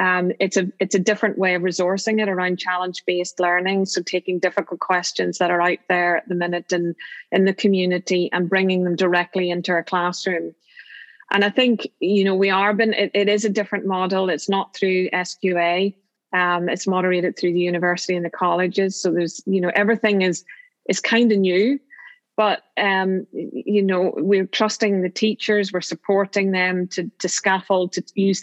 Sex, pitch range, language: female, 180-195 Hz, English